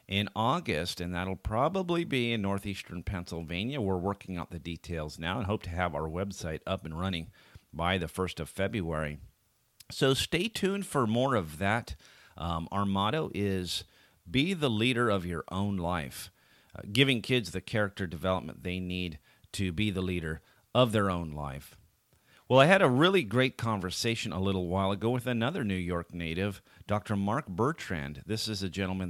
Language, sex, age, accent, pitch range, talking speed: English, male, 40-59, American, 90-115 Hz, 175 wpm